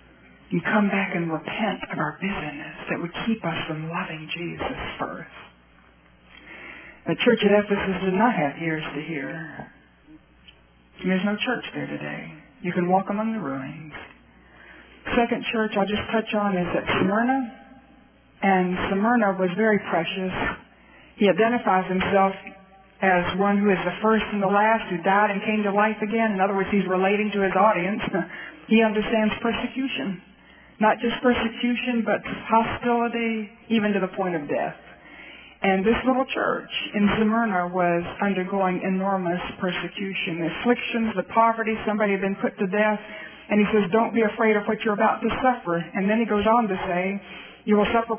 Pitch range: 185-230 Hz